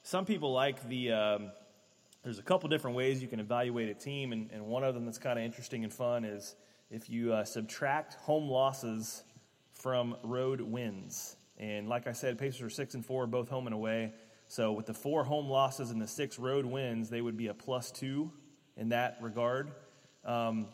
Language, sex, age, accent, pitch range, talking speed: English, male, 30-49, American, 115-135 Hz, 205 wpm